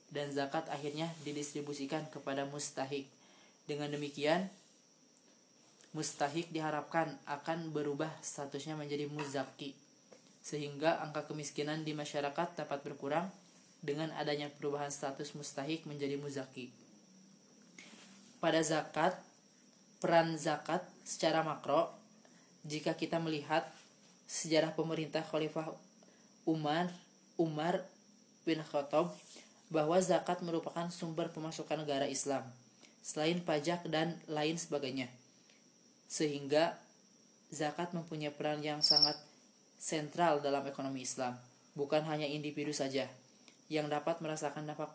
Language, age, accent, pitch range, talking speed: Indonesian, 20-39, native, 145-165 Hz, 100 wpm